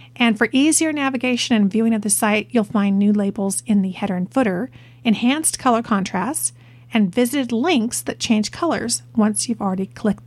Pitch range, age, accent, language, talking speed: 200-250 Hz, 40-59, American, English, 180 wpm